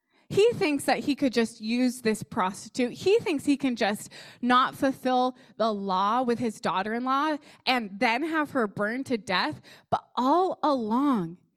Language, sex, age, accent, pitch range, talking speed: English, female, 20-39, American, 200-280 Hz, 160 wpm